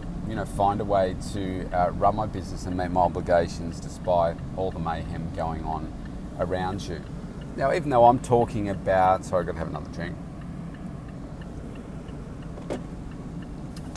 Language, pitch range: English, 90-105 Hz